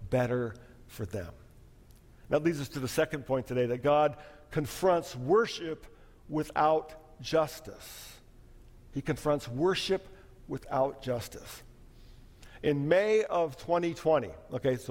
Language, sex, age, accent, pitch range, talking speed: English, male, 50-69, American, 130-175 Hz, 105 wpm